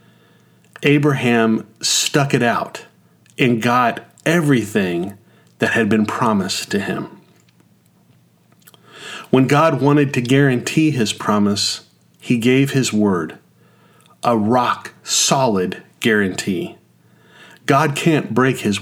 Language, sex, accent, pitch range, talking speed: English, male, American, 105-145 Hz, 100 wpm